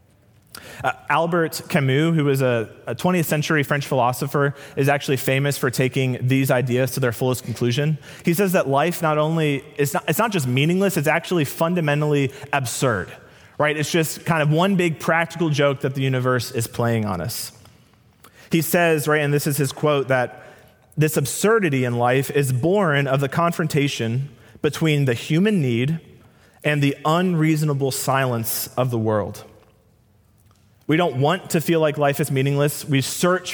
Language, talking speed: English, 165 wpm